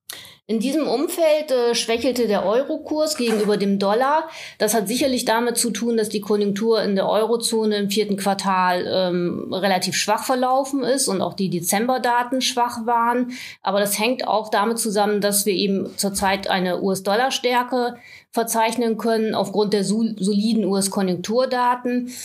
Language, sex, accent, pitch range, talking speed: German, female, German, 195-235 Hz, 145 wpm